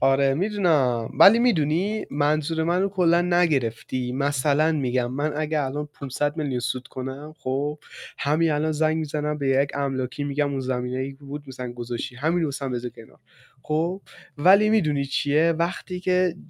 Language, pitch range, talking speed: Persian, 130-175 Hz, 155 wpm